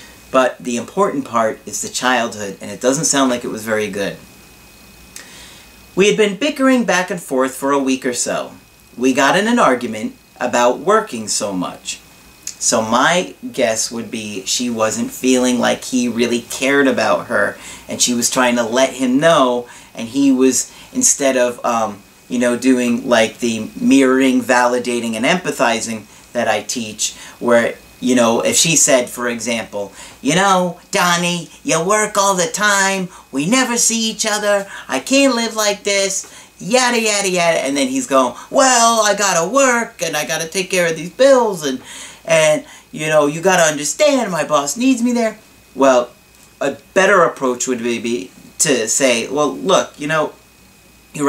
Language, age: English, 40-59